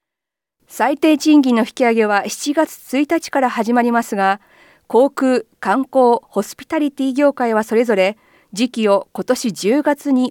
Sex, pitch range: female, 225-290 Hz